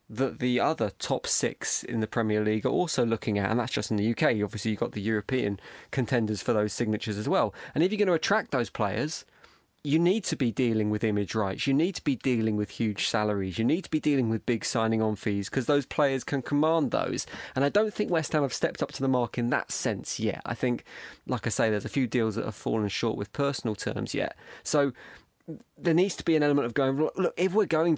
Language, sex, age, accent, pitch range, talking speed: English, male, 20-39, British, 110-130 Hz, 250 wpm